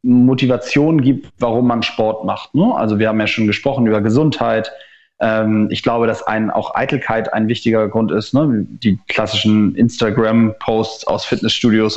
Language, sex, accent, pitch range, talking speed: German, male, German, 110-135 Hz, 160 wpm